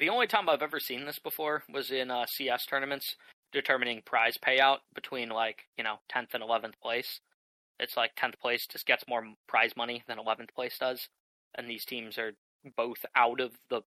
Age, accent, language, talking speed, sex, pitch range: 20-39, American, English, 195 wpm, male, 115-135 Hz